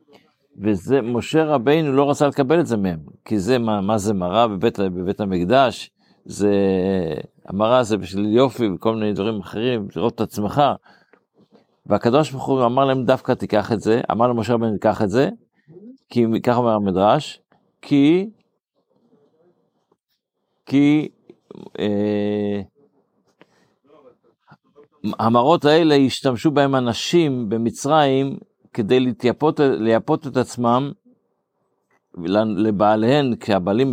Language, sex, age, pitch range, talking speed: Hebrew, male, 50-69, 105-135 Hz, 110 wpm